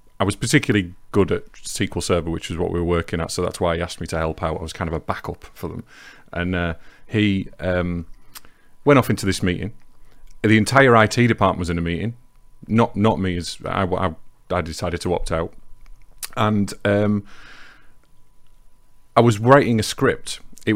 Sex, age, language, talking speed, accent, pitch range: male, 30-49, English, 195 wpm, British, 90-110 Hz